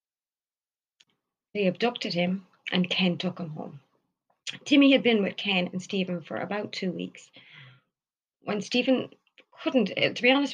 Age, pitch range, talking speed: 30-49, 175-210 Hz, 140 wpm